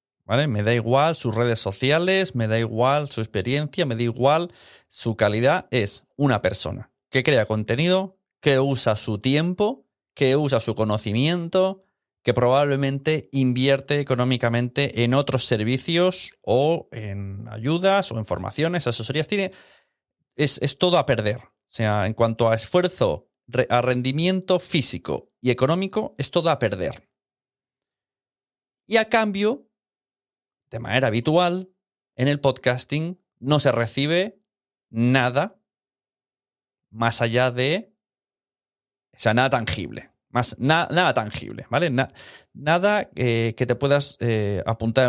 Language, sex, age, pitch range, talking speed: Spanish, male, 30-49, 115-155 Hz, 125 wpm